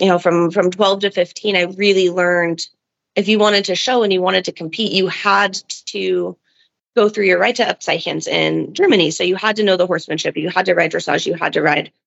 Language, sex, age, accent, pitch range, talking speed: English, female, 30-49, American, 170-200 Hz, 240 wpm